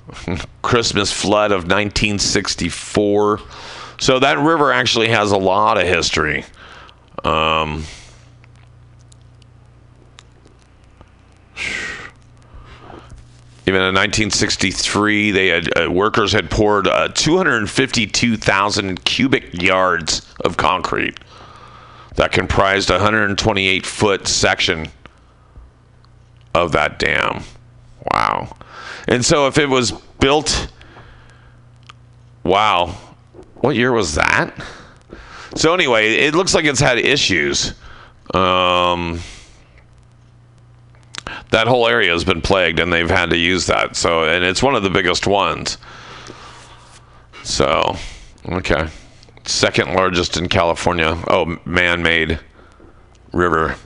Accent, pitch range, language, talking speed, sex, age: American, 90-115 Hz, English, 100 wpm, male, 40-59